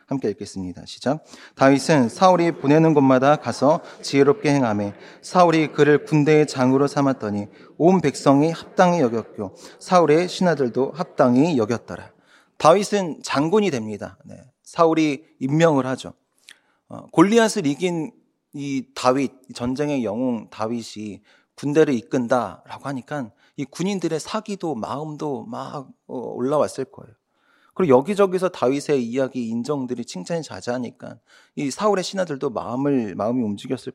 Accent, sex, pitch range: native, male, 125-180 Hz